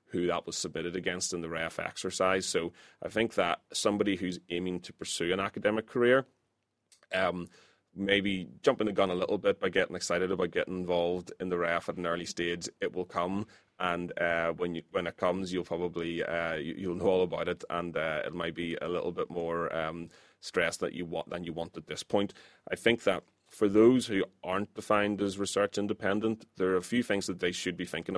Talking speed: 215 wpm